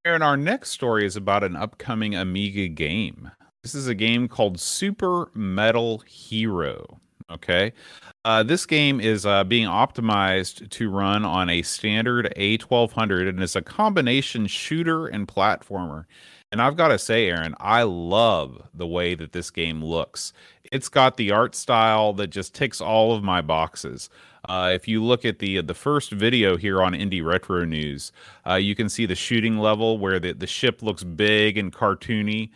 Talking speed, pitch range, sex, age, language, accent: 175 wpm, 95-115 Hz, male, 30-49, English, American